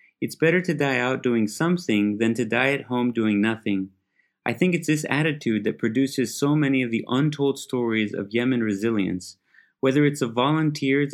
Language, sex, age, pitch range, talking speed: English, male, 30-49, 110-140 Hz, 185 wpm